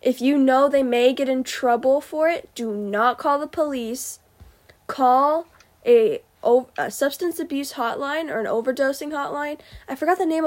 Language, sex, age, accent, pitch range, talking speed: English, female, 10-29, American, 230-280 Hz, 165 wpm